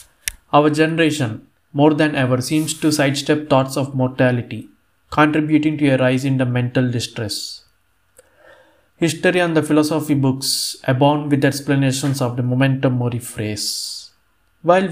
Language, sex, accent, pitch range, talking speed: Telugu, male, native, 125-145 Hz, 135 wpm